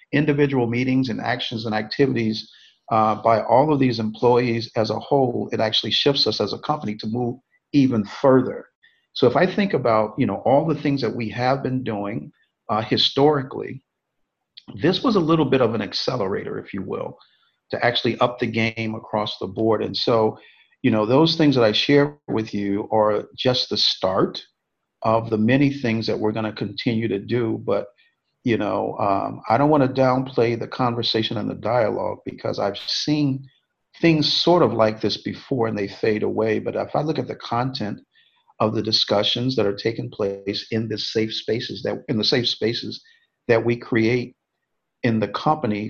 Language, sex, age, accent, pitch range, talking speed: English, male, 50-69, American, 110-135 Hz, 190 wpm